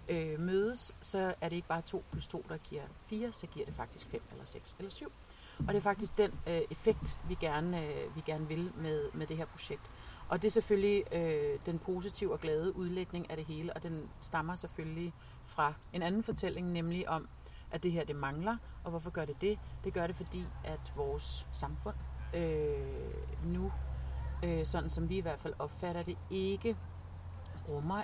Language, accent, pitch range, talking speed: Danish, native, 135-185 Hz, 195 wpm